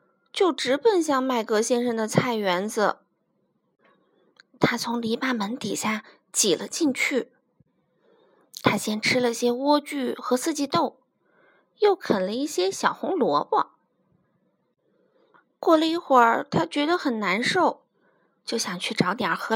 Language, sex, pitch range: Chinese, female, 240-340 Hz